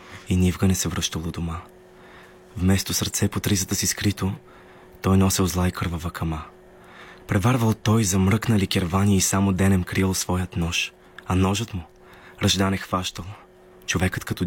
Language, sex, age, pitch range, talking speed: Bulgarian, male, 20-39, 90-105 Hz, 135 wpm